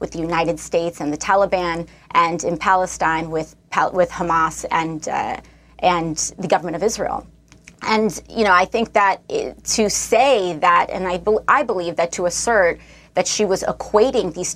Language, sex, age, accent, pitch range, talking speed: English, female, 30-49, American, 170-210 Hz, 175 wpm